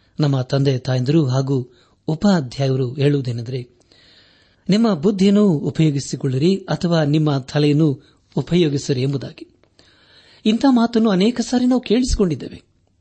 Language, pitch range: Kannada, 125-185 Hz